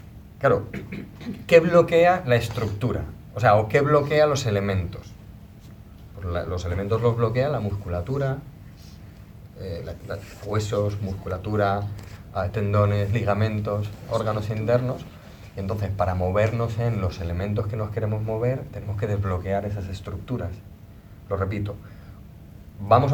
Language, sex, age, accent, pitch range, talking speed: Spanish, male, 30-49, Spanish, 95-115 Hz, 110 wpm